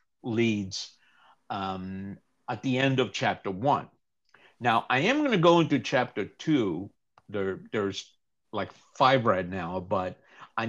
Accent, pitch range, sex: American, 100-135 Hz, male